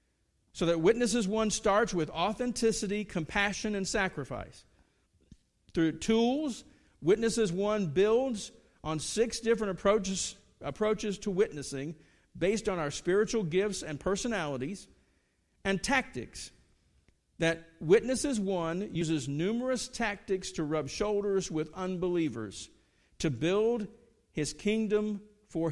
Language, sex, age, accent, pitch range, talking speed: English, male, 50-69, American, 155-220 Hz, 110 wpm